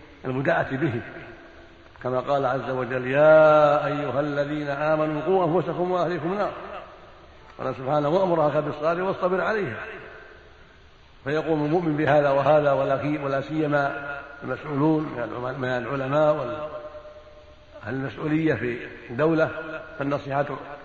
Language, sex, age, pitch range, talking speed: Arabic, male, 60-79, 130-155 Hz, 105 wpm